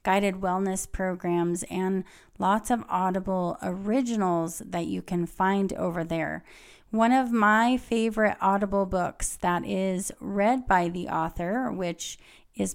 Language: English